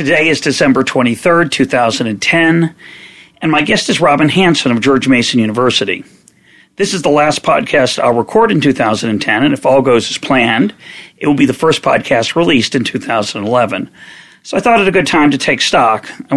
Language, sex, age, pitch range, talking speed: English, male, 40-59, 125-155 Hz, 185 wpm